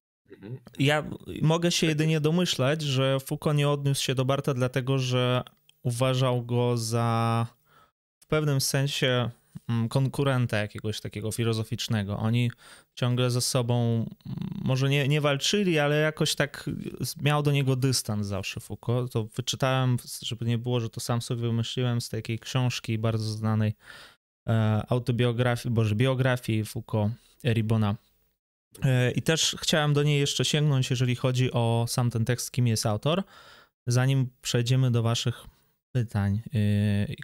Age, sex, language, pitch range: 20-39, male, Polish, 115-140 Hz